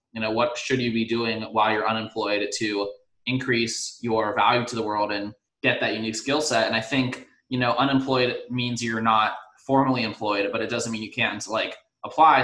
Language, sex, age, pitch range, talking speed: English, male, 20-39, 110-125 Hz, 205 wpm